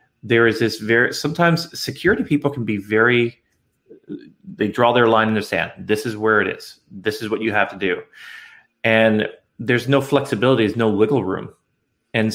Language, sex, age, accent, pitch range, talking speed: English, male, 30-49, American, 105-130 Hz, 185 wpm